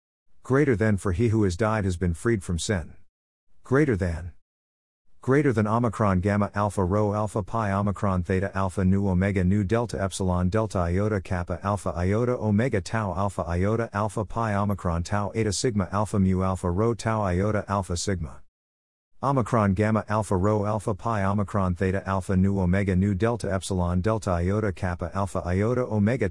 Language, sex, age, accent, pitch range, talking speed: English, male, 50-69, American, 90-110 Hz, 170 wpm